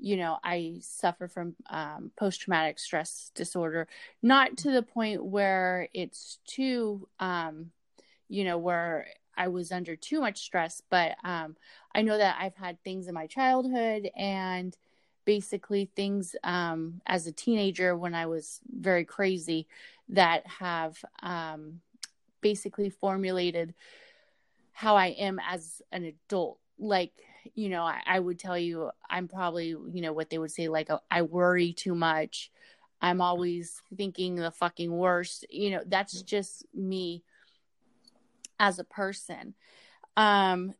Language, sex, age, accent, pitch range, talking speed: English, female, 30-49, American, 170-210 Hz, 140 wpm